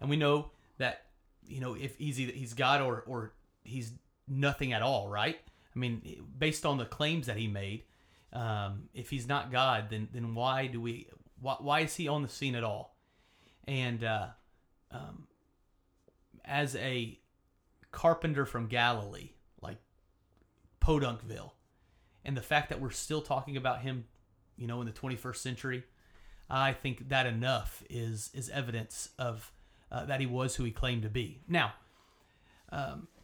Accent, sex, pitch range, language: American, male, 115-145 Hz, English